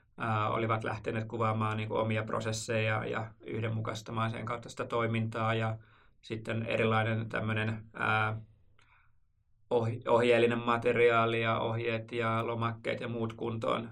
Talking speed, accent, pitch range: 105 wpm, native, 110-115 Hz